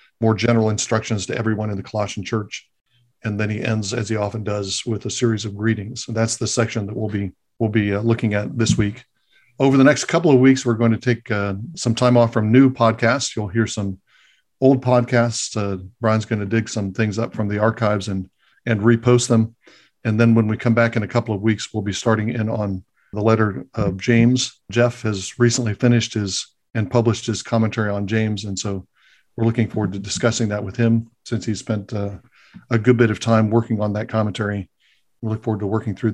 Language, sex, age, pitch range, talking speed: English, male, 50-69, 105-120 Hz, 220 wpm